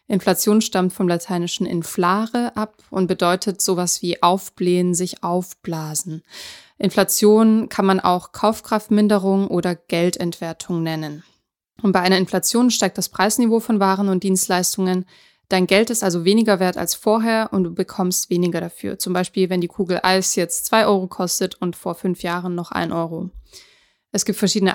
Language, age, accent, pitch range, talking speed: German, 20-39, German, 180-210 Hz, 160 wpm